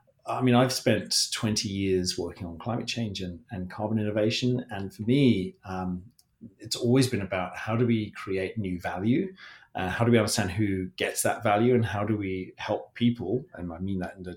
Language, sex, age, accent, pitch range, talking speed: English, male, 30-49, British, 90-110 Hz, 205 wpm